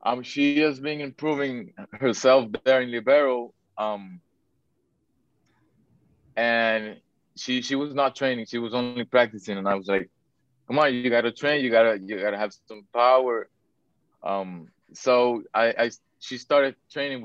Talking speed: 160 wpm